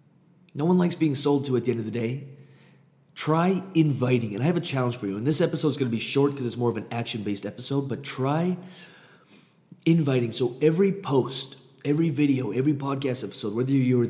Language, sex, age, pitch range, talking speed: English, male, 30-49, 120-150 Hz, 210 wpm